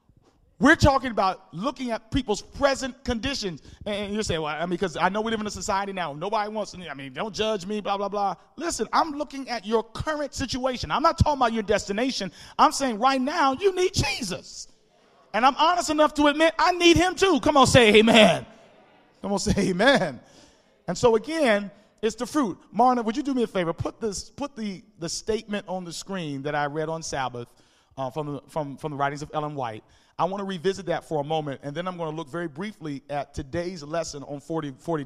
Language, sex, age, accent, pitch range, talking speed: English, male, 40-59, American, 160-225 Hz, 220 wpm